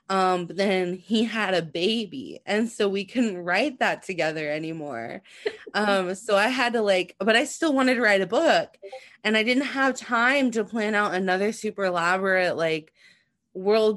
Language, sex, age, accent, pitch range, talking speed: English, female, 20-39, American, 170-220 Hz, 180 wpm